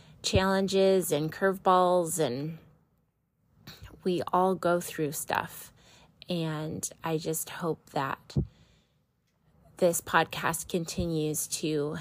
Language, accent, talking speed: English, American, 90 wpm